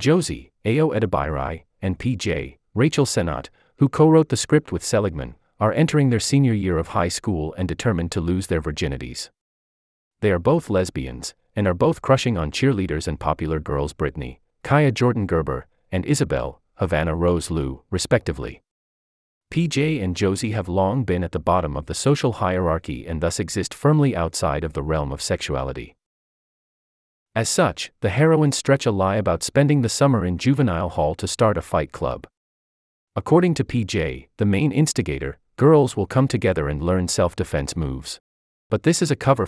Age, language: 40-59, English